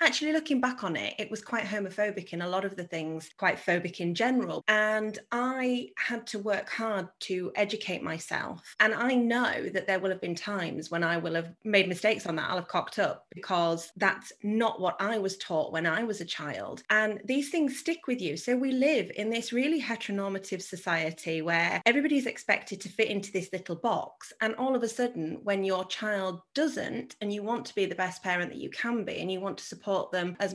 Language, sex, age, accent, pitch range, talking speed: English, female, 30-49, British, 185-230 Hz, 220 wpm